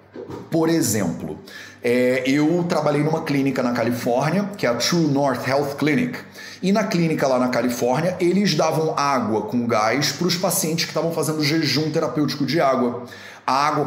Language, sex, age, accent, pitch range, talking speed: Portuguese, male, 30-49, Brazilian, 125-180 Hz, 170 wpm